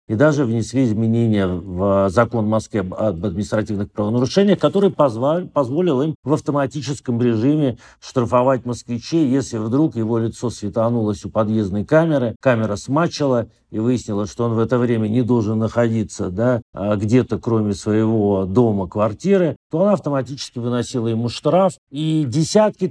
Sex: male